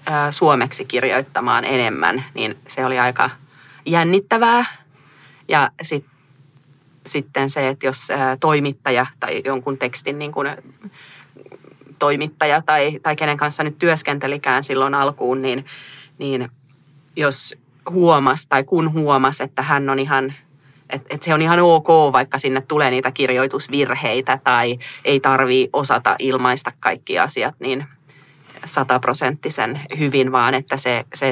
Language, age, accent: Finnish, 30-49, native